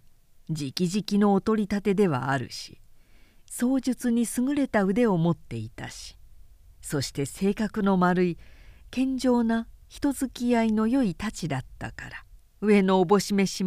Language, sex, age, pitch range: Japanese, female, 50-69, 145-235 Hz